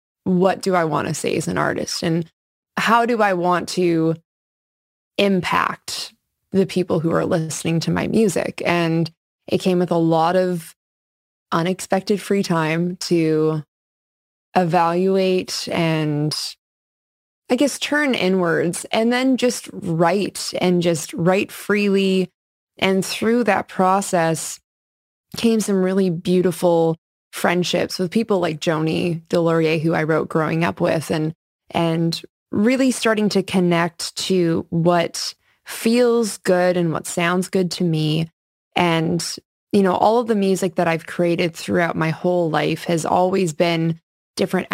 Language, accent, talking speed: English, American, 140 wpm